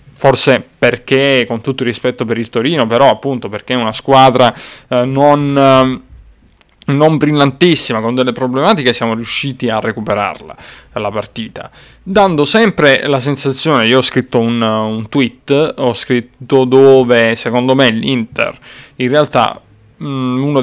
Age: 20-39